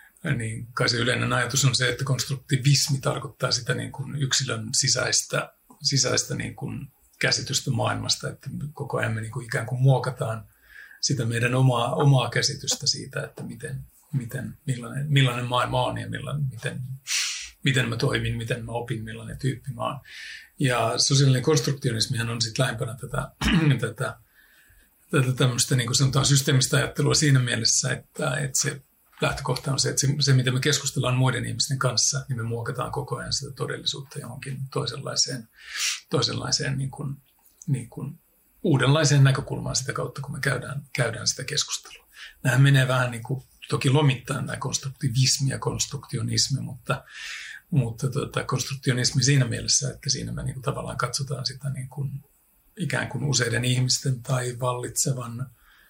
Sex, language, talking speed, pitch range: male, Finnish, 150 wpm, 125-145 Hz